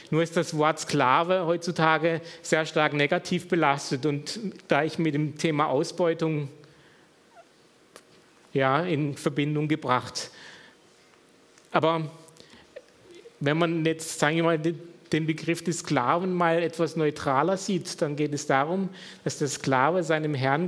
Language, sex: German, male